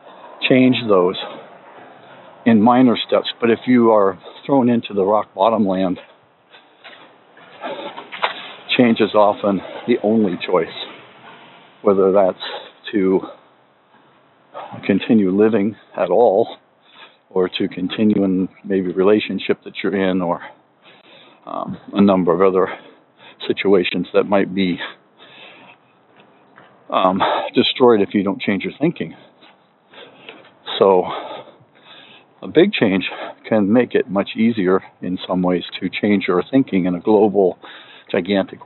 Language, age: English, 60-79